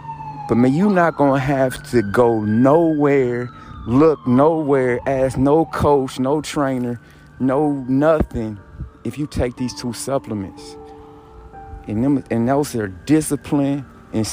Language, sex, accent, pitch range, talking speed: English, male, American, 110-150 Hz, 130 wpm